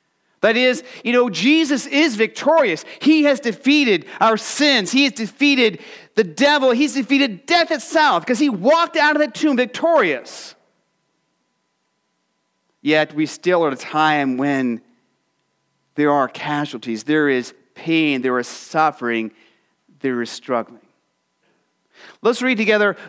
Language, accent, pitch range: English, American, 155-250 Hz